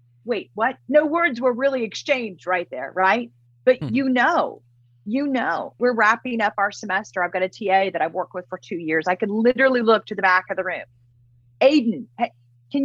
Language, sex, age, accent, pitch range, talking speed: English, female, 40-59, American, 160-245 Hz, 205 wpm